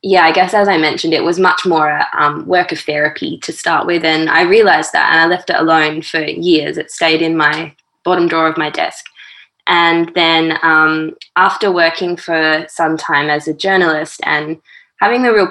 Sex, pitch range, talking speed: female, 160-185 Hz, 205 wpm